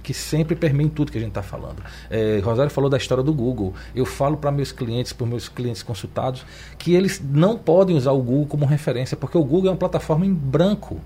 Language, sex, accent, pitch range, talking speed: Portuguese, male, Brazilian, 130-185 Hz, 230 wpm